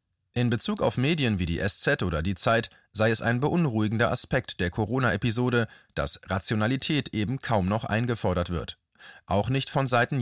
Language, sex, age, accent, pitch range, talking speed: German, male, 30-49, German, 100-135 Hz, 165 wpm